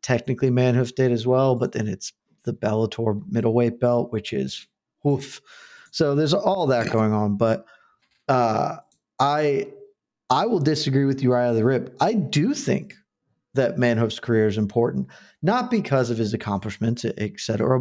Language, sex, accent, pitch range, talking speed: English, male, American, 115-140 Hz, 165 wpm